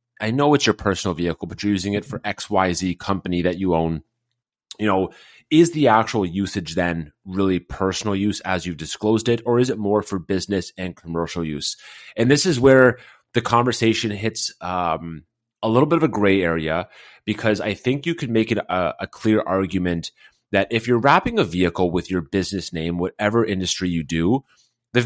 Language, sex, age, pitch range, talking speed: English, male, 30-49, 90-115 Hz, 190 wpm